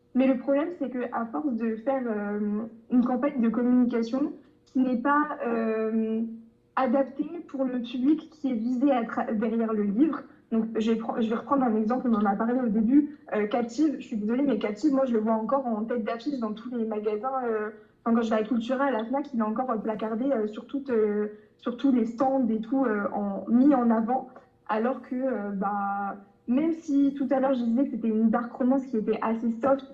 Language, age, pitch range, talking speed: French, 20-39, 220-265 Hz, 230 wpm